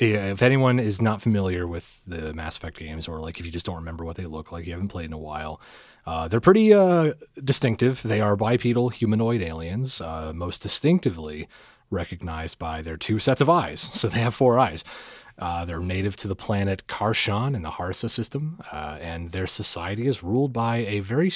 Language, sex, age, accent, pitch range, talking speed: English, male, 30-49, American, 85-130 Hz, 200 wpm